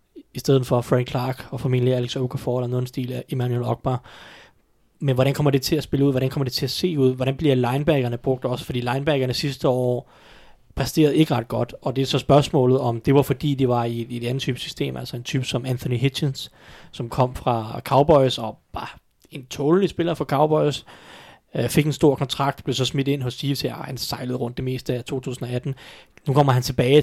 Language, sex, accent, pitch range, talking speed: Danish, male, native, 125-140 Hz, 215 wpm